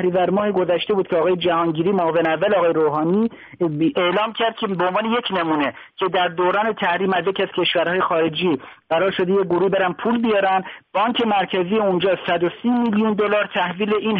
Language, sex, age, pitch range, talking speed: Persian, male, 50-69, 175-220 Hz, 175 wpm